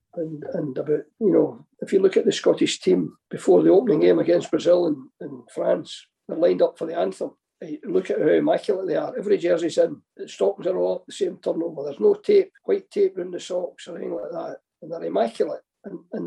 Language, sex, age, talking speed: English, male, 50-69, 230 wpm